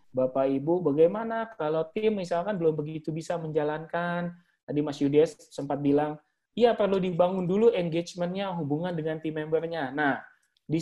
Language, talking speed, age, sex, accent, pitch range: English, 140 wpm, 20-39, male, Indonesian, 140-175 Hz